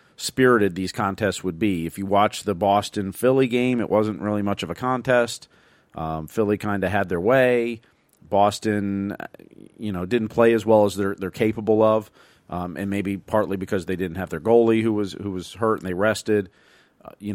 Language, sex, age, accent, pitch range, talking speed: English, male, 40-59, American, 95-115 Hz, 200 wpm